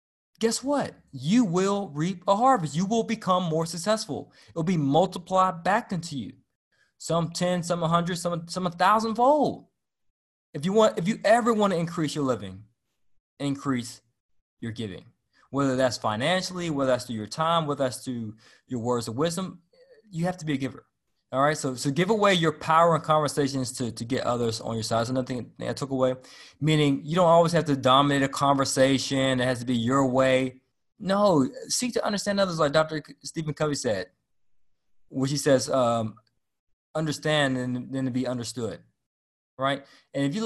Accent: American